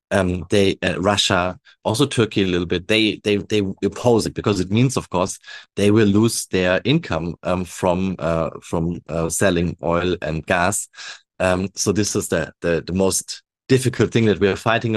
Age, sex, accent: 30-49, male, German